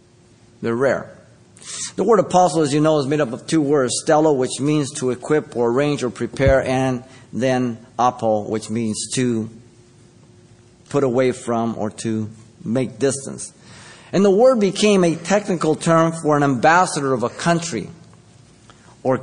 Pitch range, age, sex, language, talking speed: 130-170 Hz, 50-69, male, English, 155 wpm